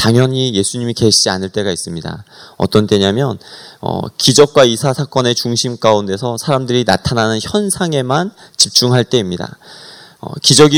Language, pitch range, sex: Korean, 110-145 Hz, male